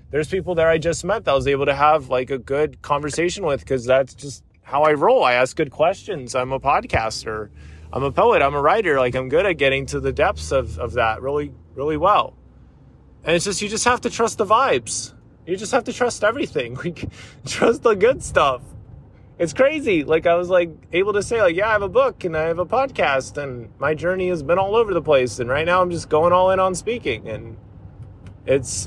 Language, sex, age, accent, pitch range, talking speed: English, male, 20-39, American, 130-185 Hz, 230 wpm